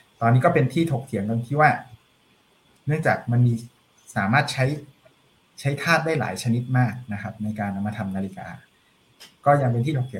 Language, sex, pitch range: Thai, male, 110-130 Hz